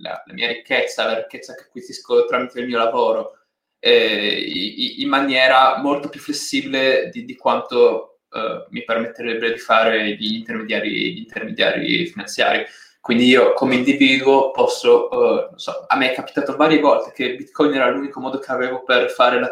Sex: male